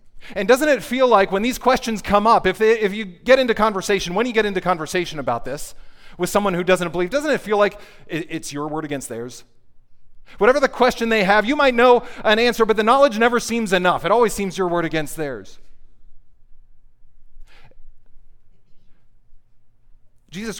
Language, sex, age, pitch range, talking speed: English, male, 40-59, 135-200 Hz, 180 wpm